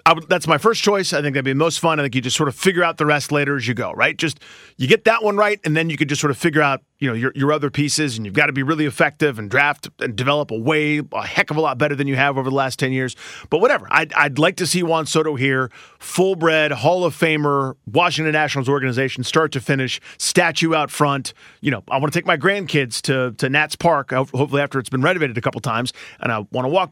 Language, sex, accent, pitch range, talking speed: English, male, American, 135-170 Hz, 275 wpm